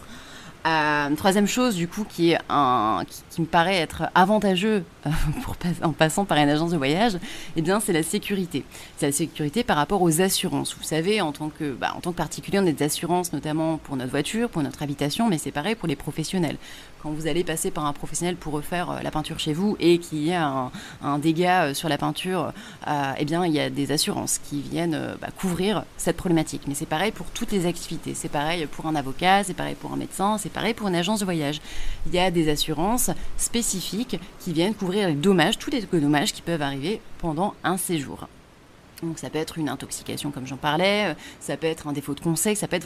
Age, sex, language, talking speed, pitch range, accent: 30-49, female, French, 230 wpm, 150-195 Hz, French